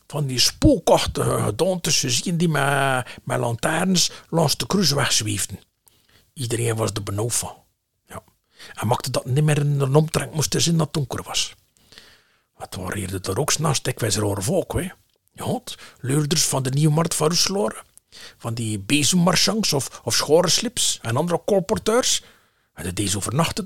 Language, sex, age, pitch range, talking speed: Dutch, male, 50-69, 120-195 Hz, 165 wpm